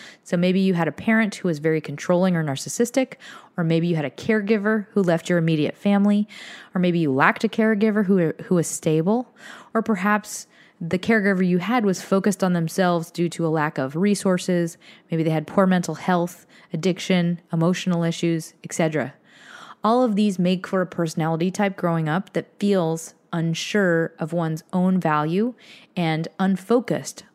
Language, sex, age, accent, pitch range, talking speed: English, female, 20-39, American, 160-200 Hz, 170 wpm